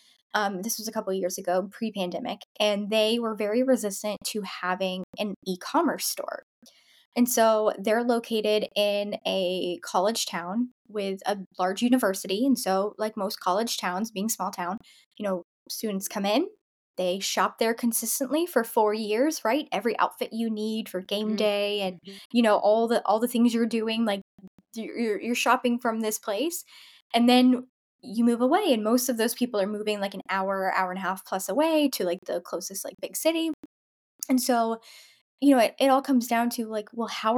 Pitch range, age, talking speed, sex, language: 200-250 Hz, 10-29, 190 wpm, female, English